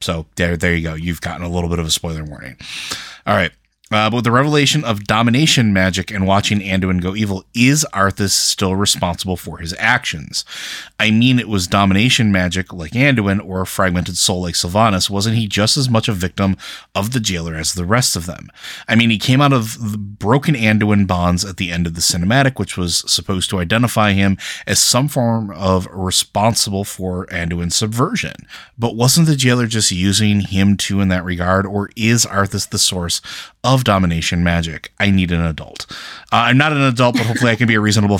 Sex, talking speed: male, 205 wpm